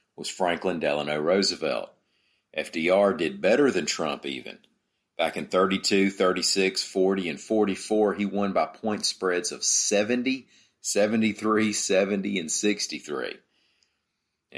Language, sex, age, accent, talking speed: English, male, 40-59, American, 115 wpm